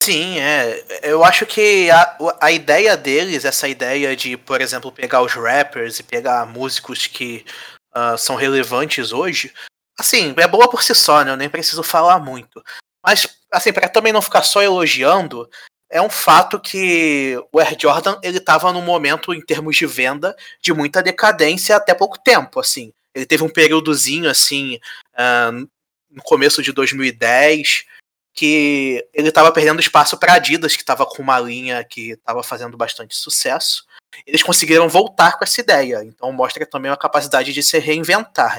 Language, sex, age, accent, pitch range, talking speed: Portuguese, male, 20-39, Brazilian, 130-175 Hz, 170 wpm